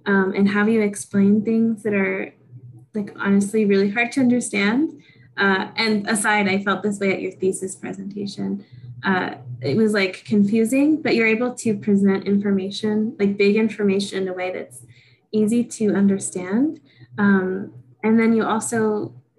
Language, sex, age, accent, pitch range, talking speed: English, female, 10-29, American, 190-225 Hz, 160 wpm